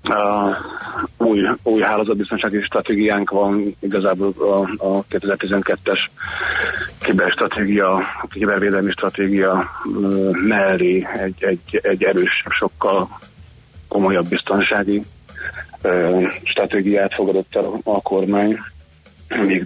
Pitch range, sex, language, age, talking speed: 95-105 Hz, male, Hungarian, 30-49, 95 wpm